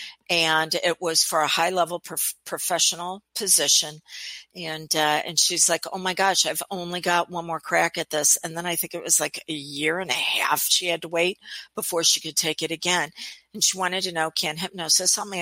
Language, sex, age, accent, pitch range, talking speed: English, female, 50-69, American, 155-190 Hz, 220 wpm